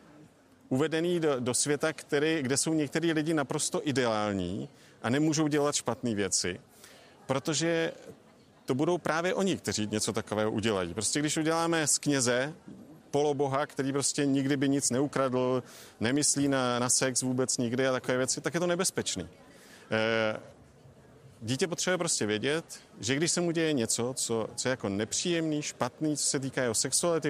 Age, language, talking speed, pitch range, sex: 40-59, Slovak, 160 wpm, 115-145 Hz, male